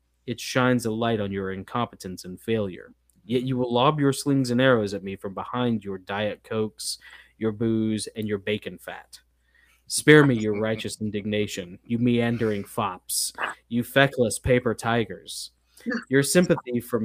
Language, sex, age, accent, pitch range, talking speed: English, male, 20-39, American, 100-130 Hz, 160 wpm